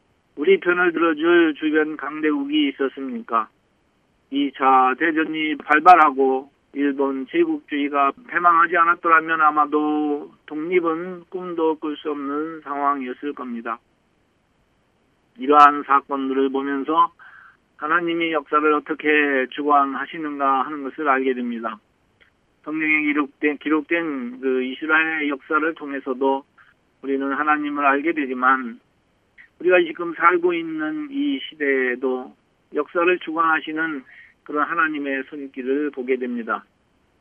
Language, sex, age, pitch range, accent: Korean, male, 40-59, 135-160 Hz, native